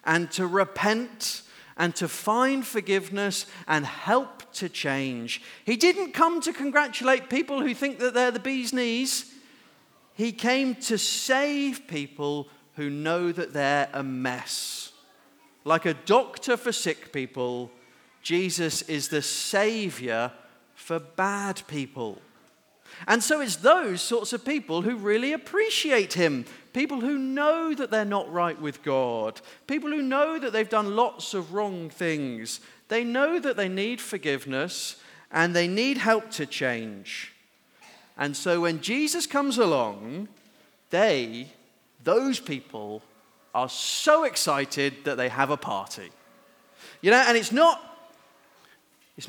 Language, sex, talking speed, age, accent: English, male, 140 wpm, 40-59, British